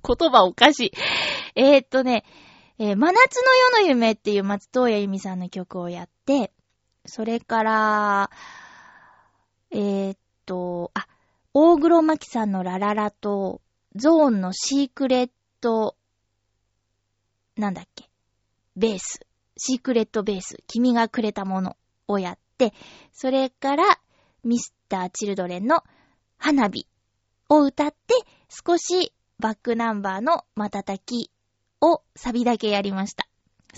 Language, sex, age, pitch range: Japanese, female, 20-39, 195-280 Hz